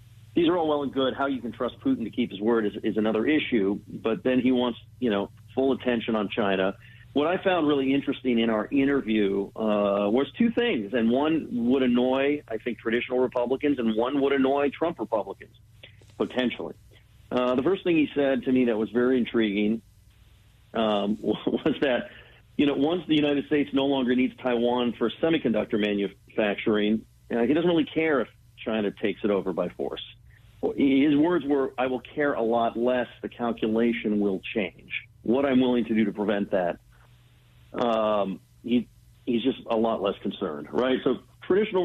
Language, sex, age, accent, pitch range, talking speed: English, male, 50-69, American, 110-135 Hz, 185 wpm